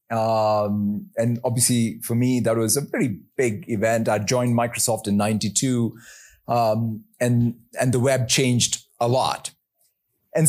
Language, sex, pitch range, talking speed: English, male, 125-165 Hz, 145 wpm